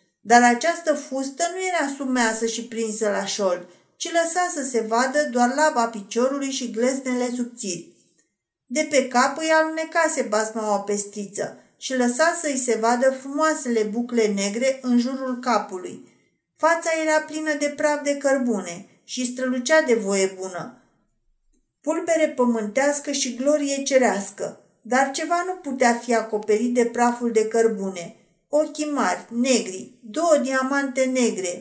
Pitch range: 230-285 Hz